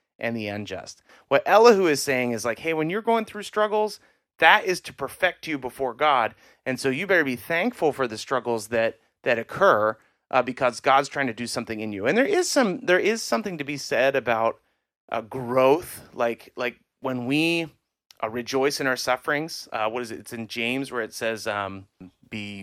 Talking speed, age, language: 205 wpm, 30-49, English